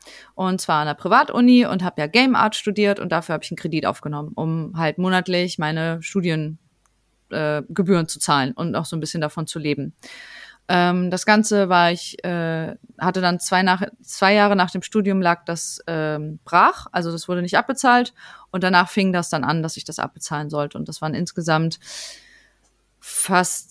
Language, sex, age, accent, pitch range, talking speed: German, female, 30-49, German, 160-205 Hz, 185 wpm